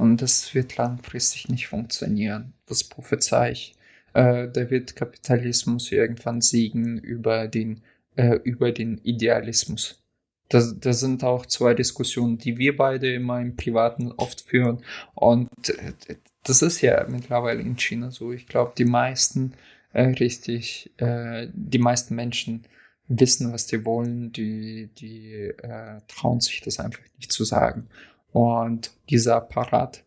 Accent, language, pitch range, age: German, German, 115-125 Hz, 20-39